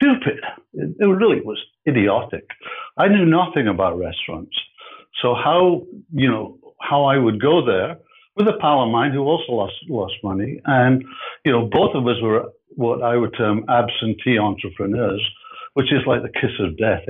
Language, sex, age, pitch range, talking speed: English, male, 60-79, 115-170 Hz, 170 wpm